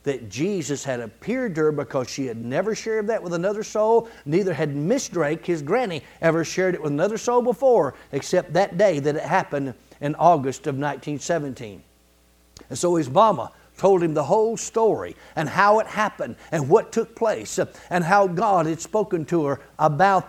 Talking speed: 185 wpm